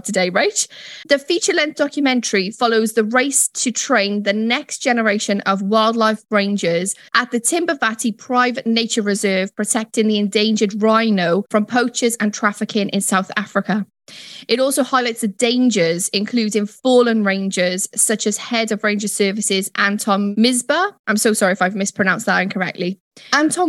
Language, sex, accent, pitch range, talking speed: English, female, British, 200-235 Hz, 145 wpm